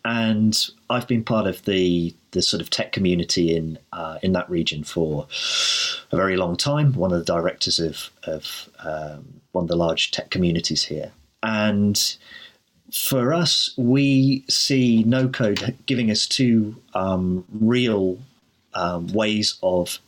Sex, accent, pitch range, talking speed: male, British, 90-115 Hz, 150 wpm